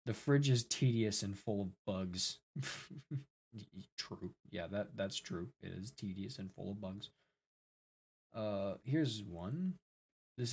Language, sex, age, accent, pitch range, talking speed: English, male, 20-39, American, 100-120 Hz, 135 wpm